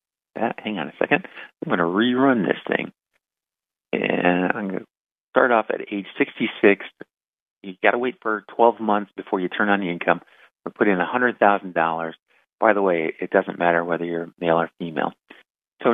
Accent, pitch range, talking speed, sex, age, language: American, 90-105 Hz, 185 wpm, male, 50-69, English